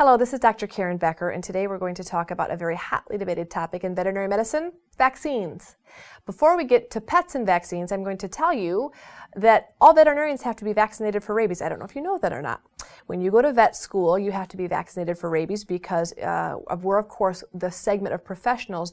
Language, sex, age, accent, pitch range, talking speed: English, female, 30-49, American, 180-235 Hz, 235 wpm